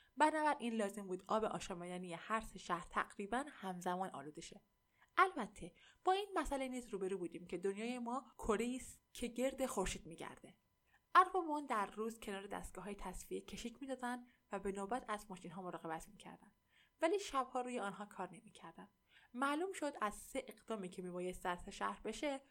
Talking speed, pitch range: 155 wpm, 185-245 Hz